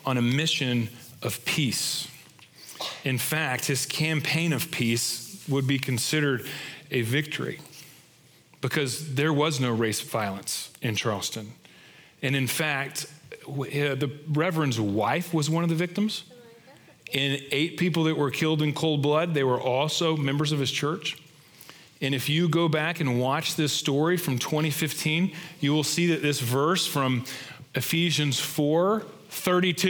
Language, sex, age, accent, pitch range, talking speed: English, male, 40-59, American, 130-160 Hz, 145 wpm